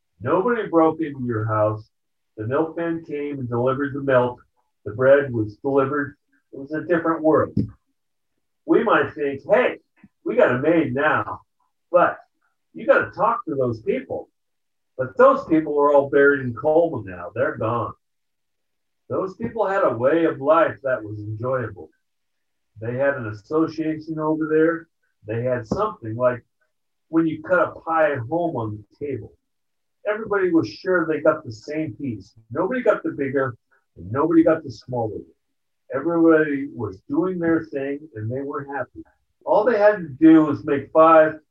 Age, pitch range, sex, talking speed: 50-69, 130-165 Hz, male, 160 wpm